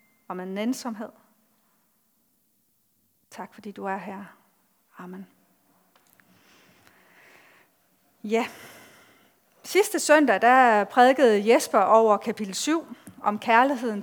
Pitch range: 205-245 Hz